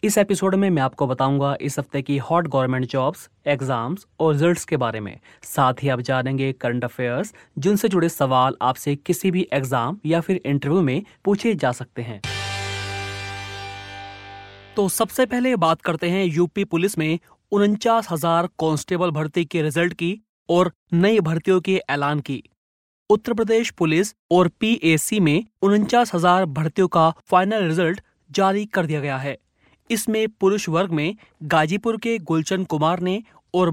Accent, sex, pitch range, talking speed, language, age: native, male, 145-195 Hz, 150 wpm, Hindi, 30-49